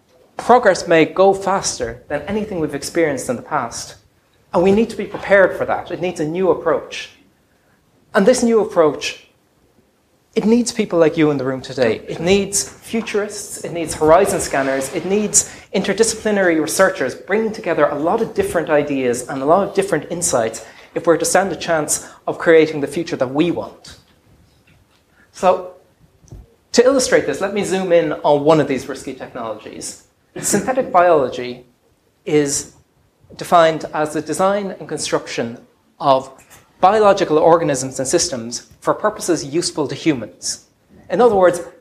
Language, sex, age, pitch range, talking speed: English, male, 30-49, 150-200 Hz, 160 wpm